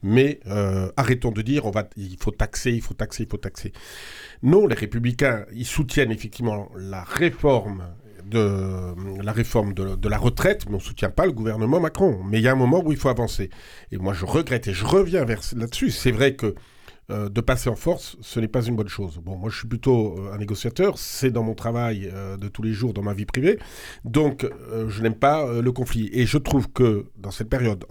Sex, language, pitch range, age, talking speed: male, French, 105-125 Hz, 50-69, 220 wpm